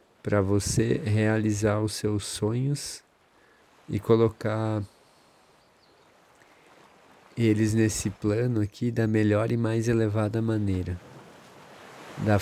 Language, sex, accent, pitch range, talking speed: Portuguese, male, Brazilian, 105-115 Hz, 90 wpm